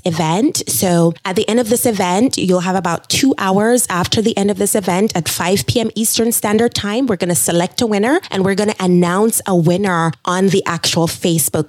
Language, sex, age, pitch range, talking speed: English, female, 20-39, 175-230 Hz, 215 wpm